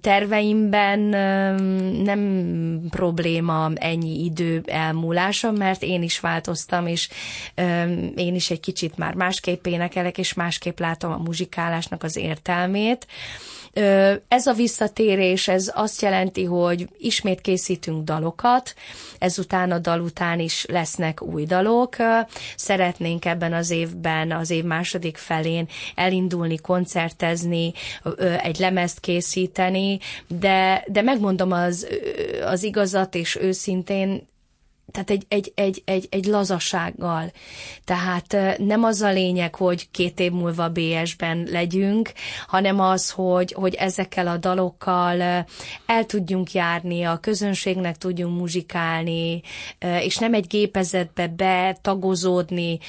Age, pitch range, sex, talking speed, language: 20-39, 170-195 Hz, female, 115 wpm, Hungarian